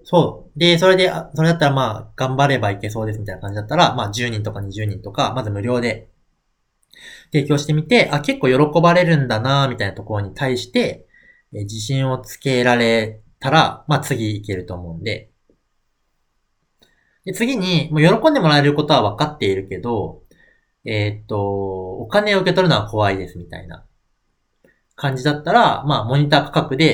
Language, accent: Japanese, native